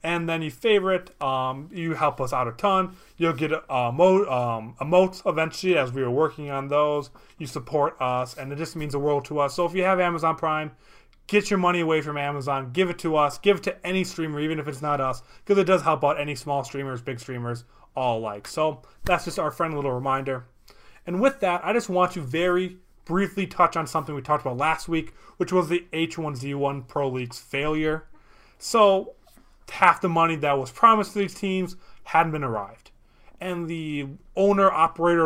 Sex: male